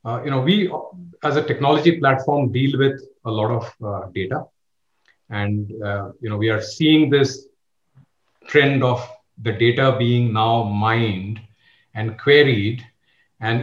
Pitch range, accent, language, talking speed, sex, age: 110-140 Hz, Indian, English, 145 wpm, male, 40-59